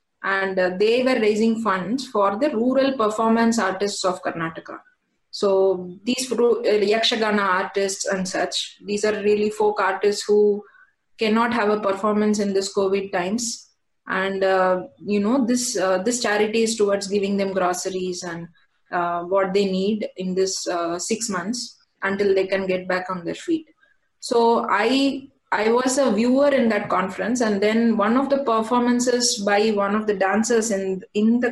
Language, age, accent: Hindi, 20-39, native